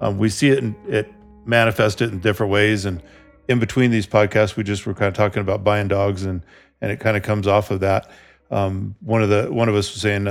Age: 40-59